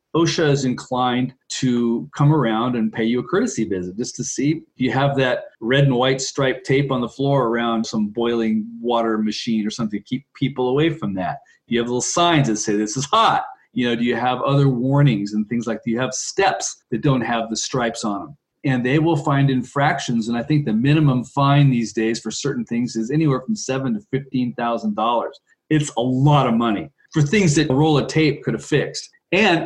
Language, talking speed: English, 220 wpm